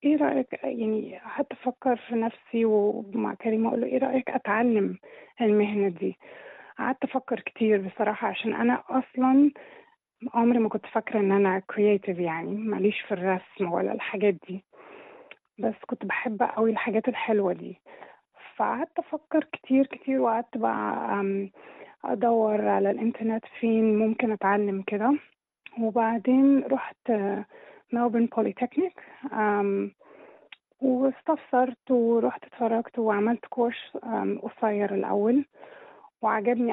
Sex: female